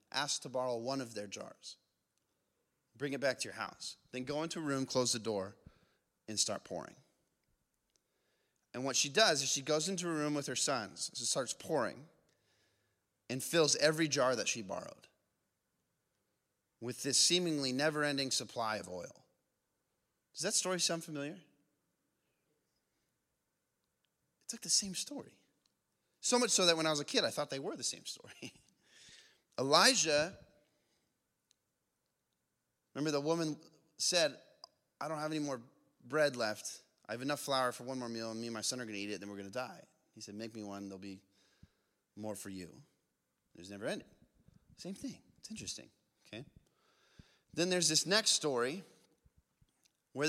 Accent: American